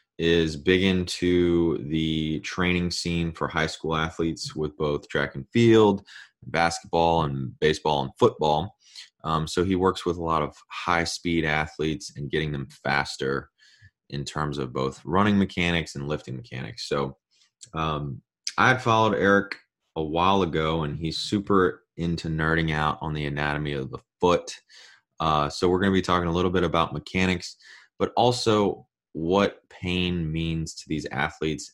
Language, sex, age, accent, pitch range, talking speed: English, male, 20-39, American, 75-95 Hz, 160 wpm